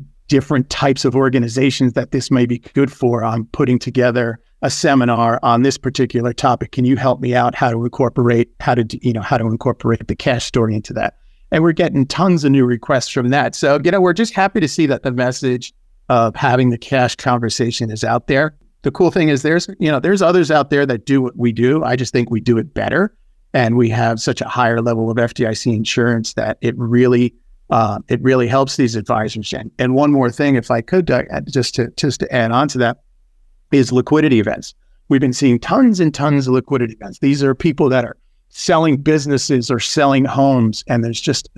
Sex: male